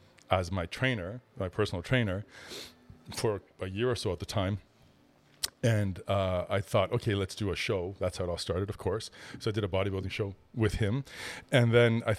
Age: 40-59